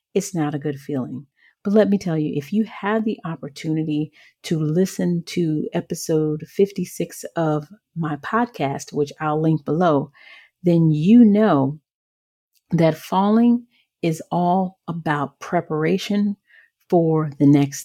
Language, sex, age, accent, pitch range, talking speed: English, female, 40-59, American, 155-215 Hz, 130 wpm